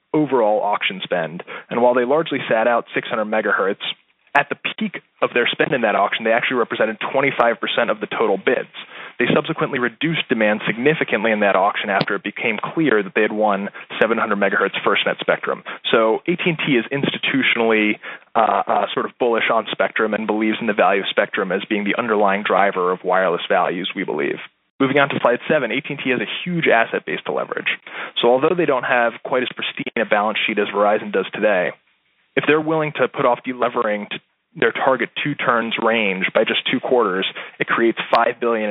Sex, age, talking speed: male, 20-39, 195 wpm